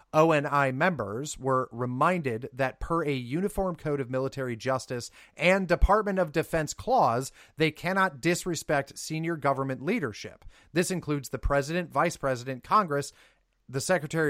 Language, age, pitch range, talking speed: English, 30-49, 130-175 Hz, 135 wpm